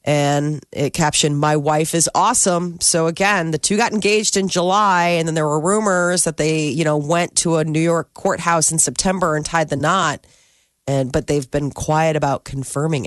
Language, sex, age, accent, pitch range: Japanese, female, 30-49, American, 150-190 Hz